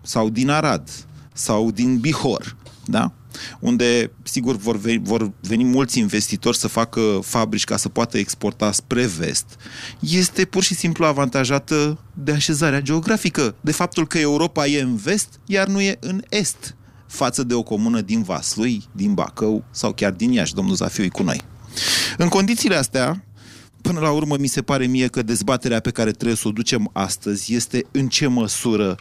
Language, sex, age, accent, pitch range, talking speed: Romanian, male, 30-49, native, 110-145 Hz, 170 wpm